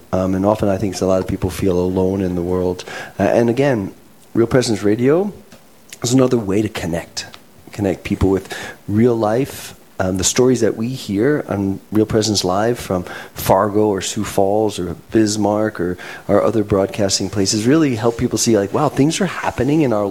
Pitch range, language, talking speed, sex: 100-130 Hz, English, 190 wpm, male